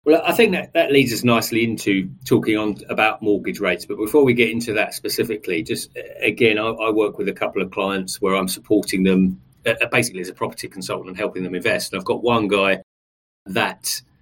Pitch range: 95-125 Hz